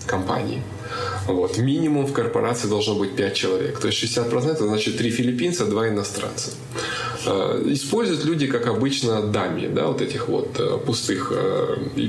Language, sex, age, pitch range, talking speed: Ukrainian, male, 20-39, 105-130 Hz, 145 wpm